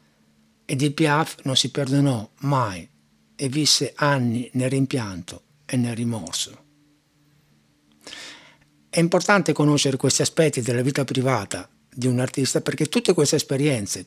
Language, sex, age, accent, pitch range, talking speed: Italian, male, 60-79, native, 115-150 Hz, 125 wpm